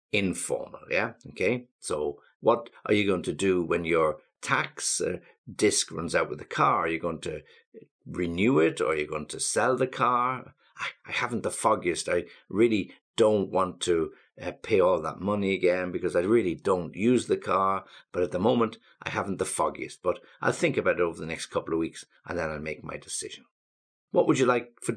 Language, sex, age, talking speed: English, male, 60-79, 210 wpm